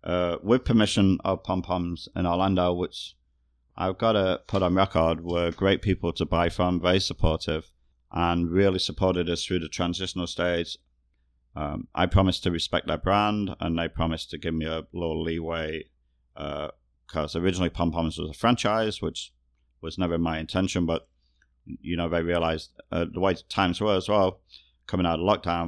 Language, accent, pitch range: English, British, 80-90 Hz